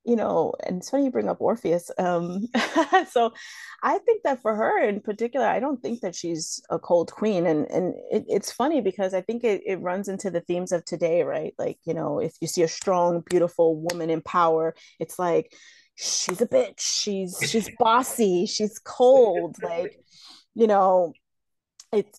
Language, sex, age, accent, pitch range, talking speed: English, female, 30-49, American, 170-230 Hz, 185 wpm